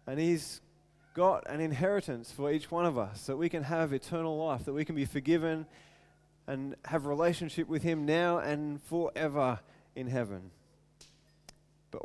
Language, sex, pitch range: English, male, 125-155 Hz